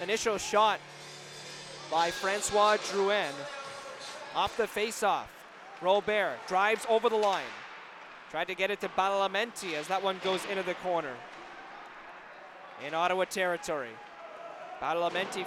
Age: 30-49